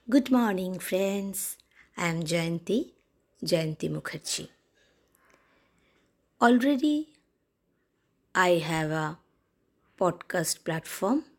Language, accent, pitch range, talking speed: English, Indian, 165-210 Hz, 75 wpm